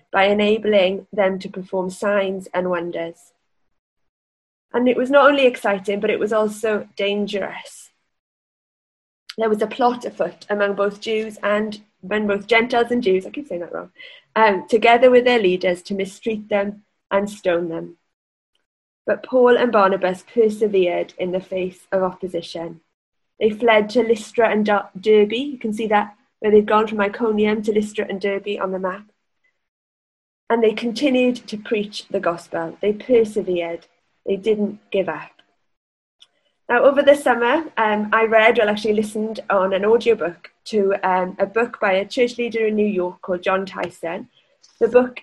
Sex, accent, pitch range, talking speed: female, British, 190-225 Hz, 165 wpm